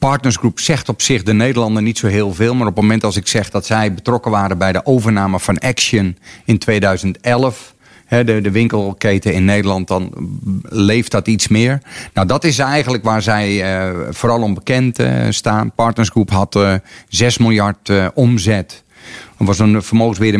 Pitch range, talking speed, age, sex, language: 100-120 Hz, 165 wpm, 40-59, male, Dutch